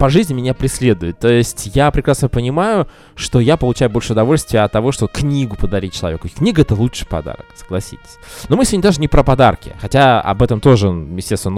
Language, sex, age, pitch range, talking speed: Russian, male, 20-39, 105-140 Hz, 190 wpm